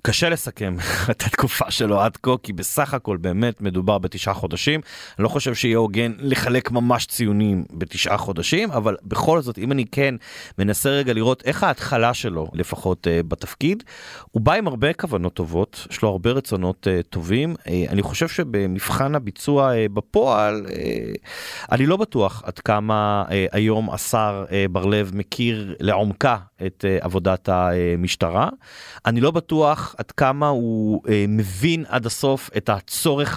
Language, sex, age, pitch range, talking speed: Hebrew, male, 30-49, 95-125 Hz, 140 wpm